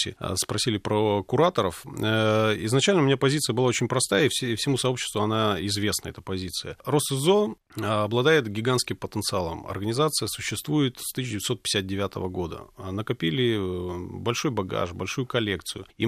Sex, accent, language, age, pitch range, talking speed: male, native, Russian, 30-49, 105-135 Hz, 120 wpm